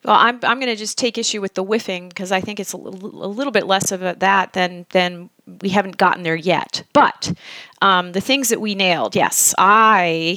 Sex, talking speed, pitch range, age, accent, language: female, 230 wpm, 165-200 Hz, 30-49, American, English